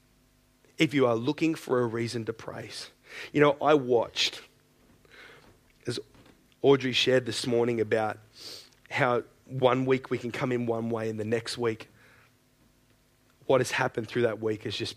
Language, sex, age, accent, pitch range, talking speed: English, male, 30-49, Australian, 115-135 Hz, 160 wpm